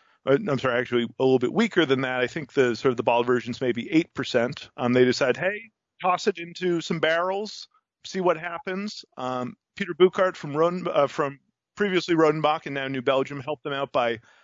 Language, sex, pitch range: English, male, 125-170 Hz